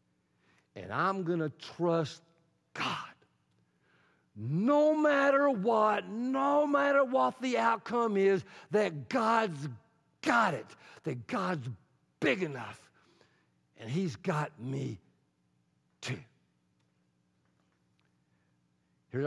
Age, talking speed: 60-79, 90 wpm